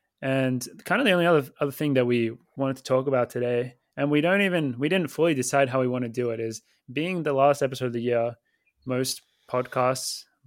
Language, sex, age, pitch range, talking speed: English, male, 20-39, 120-140 Hz, 225 wpm